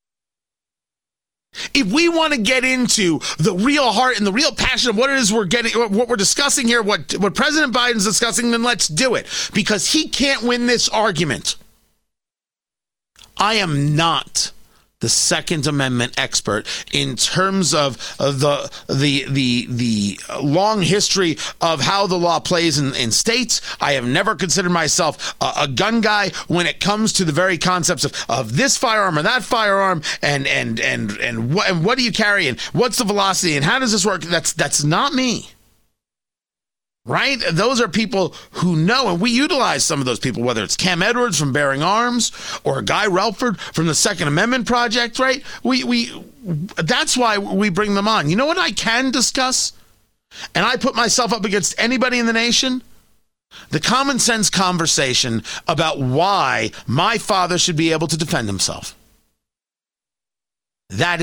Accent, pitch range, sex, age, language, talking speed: American, 155-235 Hz, male, 30-49, English, 175 wpm